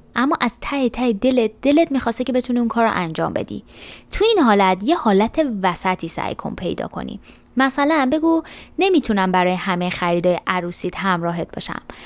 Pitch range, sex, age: 180-245 Hz, female, 20-39